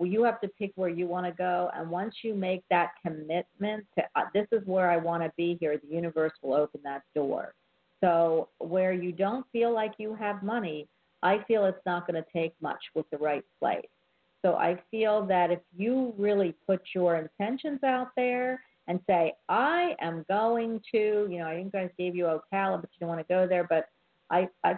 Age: 50-69